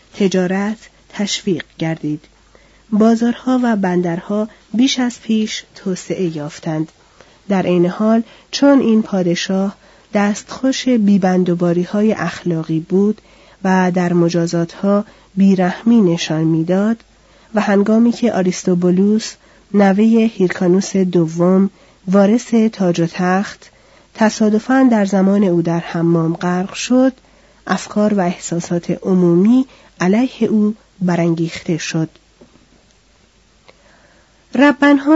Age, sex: 40-59, female